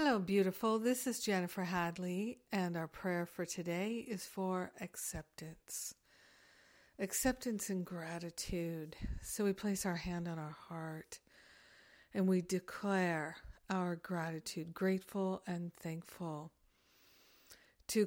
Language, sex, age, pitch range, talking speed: English, female, 60-79, 175-195 Hz, 115 wpm